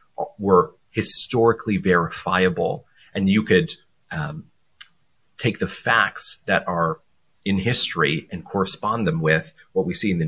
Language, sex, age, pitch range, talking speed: English, male, 30-49, 95-125 Hz, 135 wpm